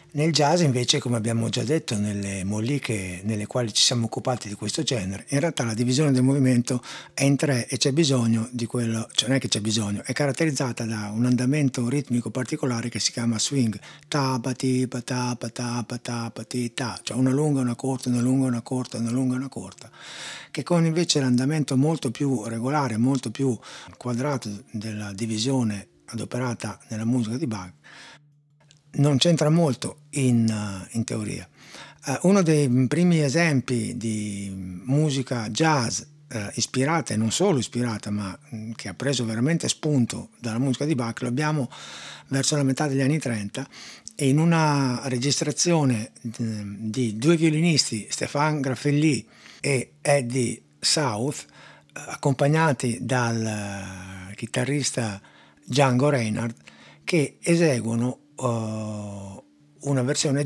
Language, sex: Italian, male